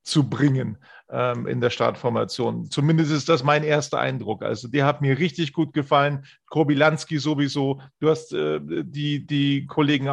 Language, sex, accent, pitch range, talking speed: German, male, German, 145-160 Hz, 165 wpm